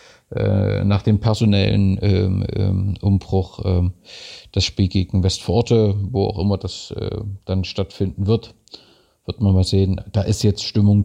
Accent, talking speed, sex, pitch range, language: German, 140 wpm, male, 95-110 Hz, German